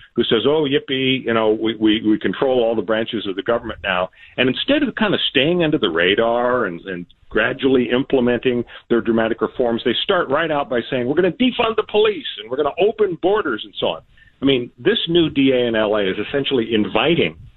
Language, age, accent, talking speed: English, 50-69, American, 220 wpm